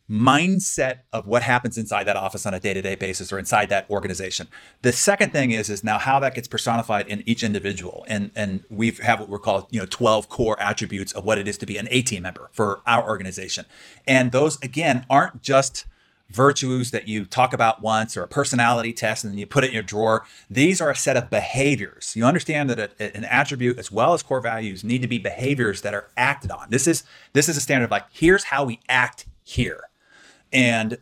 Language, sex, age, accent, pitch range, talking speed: English, male, 30-49, American, 105-130 Hz, 225 wpm